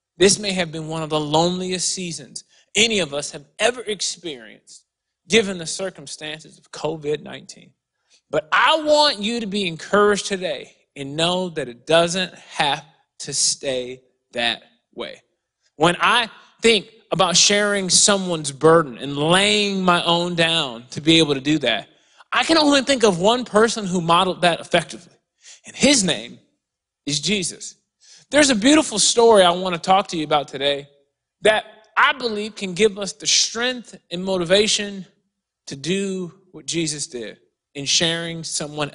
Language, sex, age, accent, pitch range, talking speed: English, male, 30-49, American, 150-205 Hz, 155 wpm